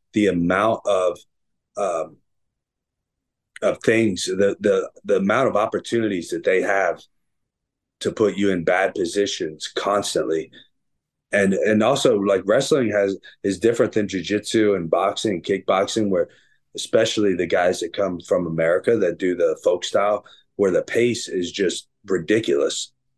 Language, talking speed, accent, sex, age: English, 140 wpm, American, male, 30-49